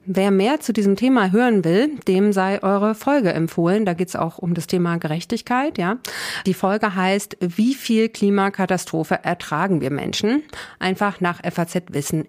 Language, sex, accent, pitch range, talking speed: German, female, German, 170-205 Hz, 160 wpm